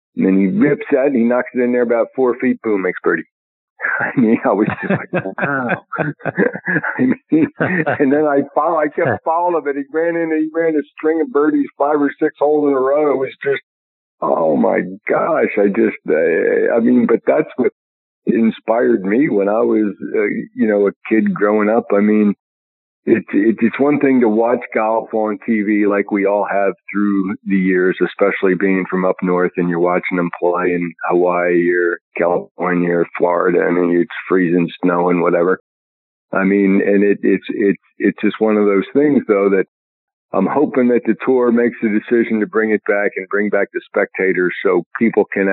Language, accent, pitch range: English, American, 90-130 Hz